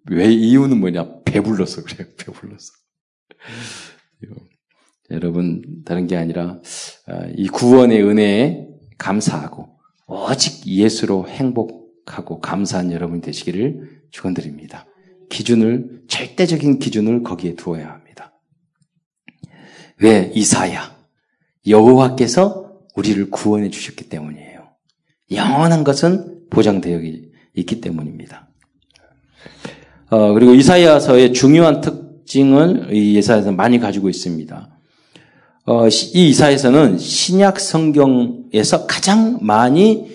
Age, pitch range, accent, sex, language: 40-59, 90-150 Hz, native, male, Korean